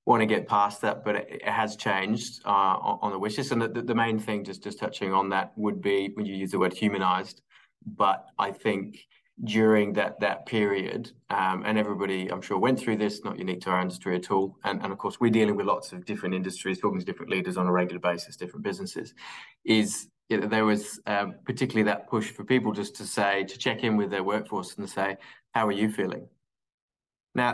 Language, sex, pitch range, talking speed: English, male, 100-115 Hz, 220 wpm